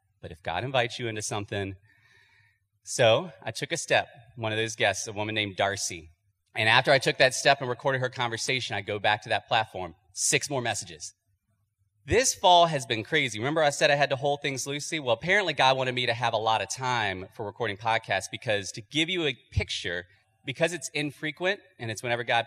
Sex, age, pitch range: male, 30-49, 105-140 Hz